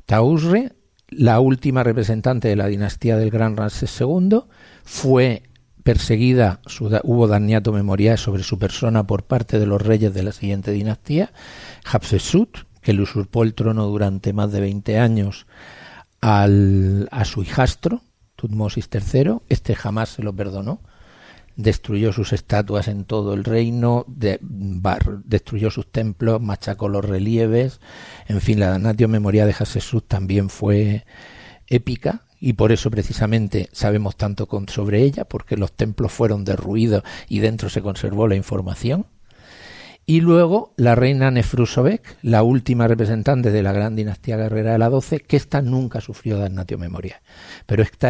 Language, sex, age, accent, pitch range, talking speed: Spanish, male, 50-69, Spanish, 105-120 Hz, 150 wpm